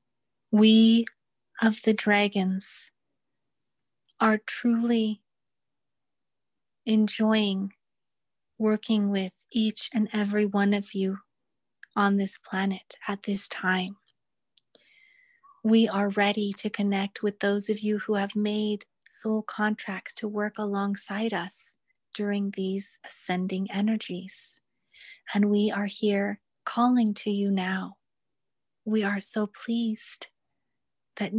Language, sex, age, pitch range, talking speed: English, female, 30-49, 195-215 Hz, 105 wpm